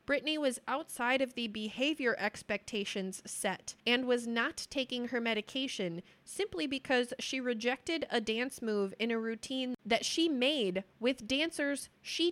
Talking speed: 145 wpm